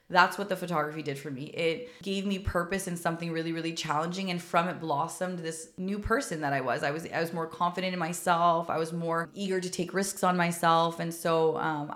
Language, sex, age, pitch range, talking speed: English, female, 20-39, 160-180 Hz, 230 wpm